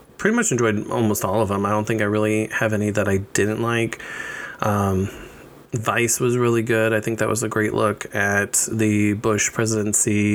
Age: 20-39